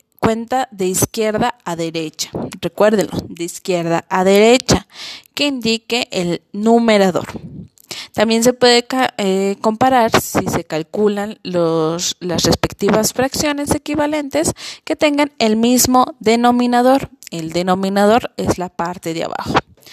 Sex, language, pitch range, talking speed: female, Spanish, 195-255 Hz, 115 wpm